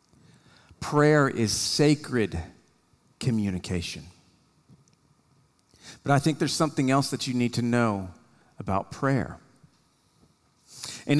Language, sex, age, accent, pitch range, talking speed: English, male, 40-59, American, 130-165 Hz, 95 wpm